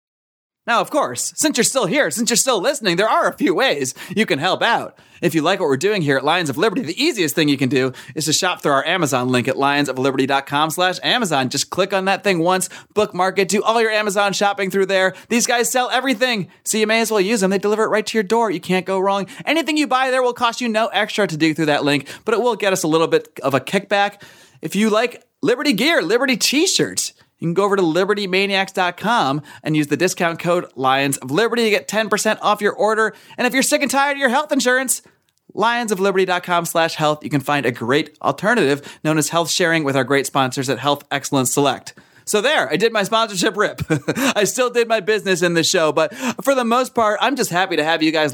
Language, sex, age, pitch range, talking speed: English, male, 30-49, 155-220 Hz, 240 wpm